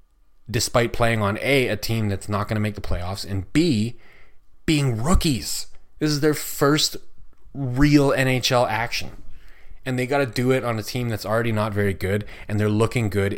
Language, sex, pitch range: English, male, 100-115 Hz